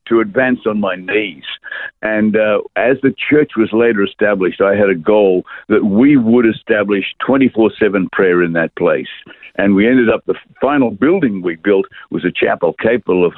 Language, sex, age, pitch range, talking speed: English, male, 60-79, 95-110 Hz, 185 wpm